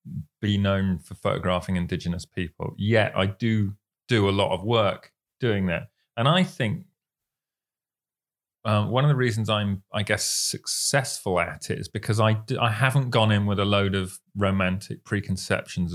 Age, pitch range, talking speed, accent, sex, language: 30-49, 95-135 Hz, 165 wpm, British, male, English